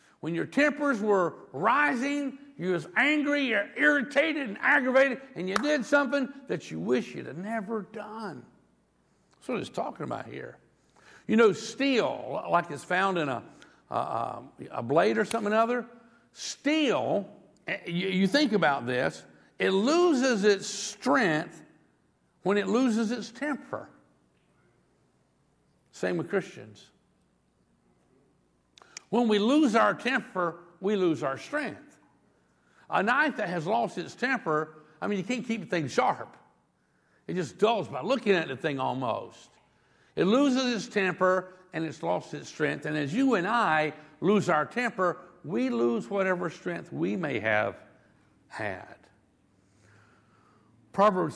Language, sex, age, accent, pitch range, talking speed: English, male, 60-79, American, 155-240 Hz, 140 wpm